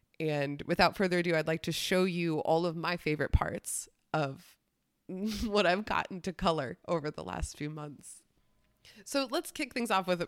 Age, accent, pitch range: 20-39, American, 170-240 Hz